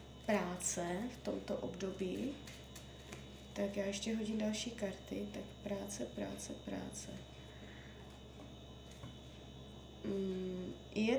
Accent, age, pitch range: native, 20-39, 180-230 Hz